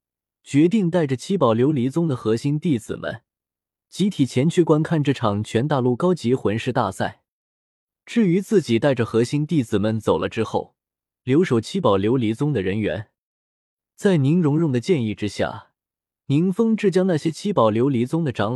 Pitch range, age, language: 115-170 Hz, 20-39, Chinese